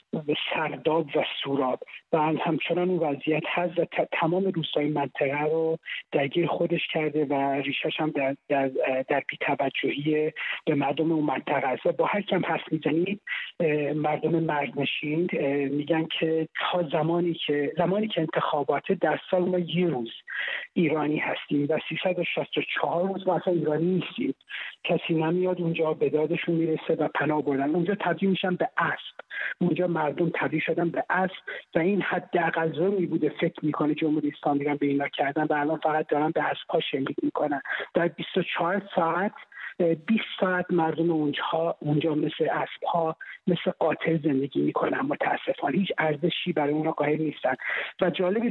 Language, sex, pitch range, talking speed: Persian, male, 155-180 Hz, 150 wpm